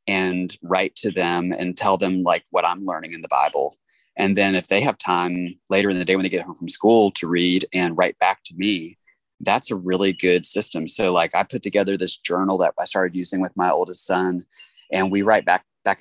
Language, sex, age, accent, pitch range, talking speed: English, male, 20-39, American, 90-105 Hz, 230 wpm